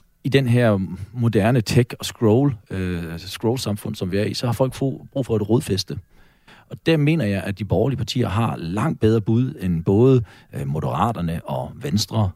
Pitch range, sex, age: 100-130 Hz, male, 40-59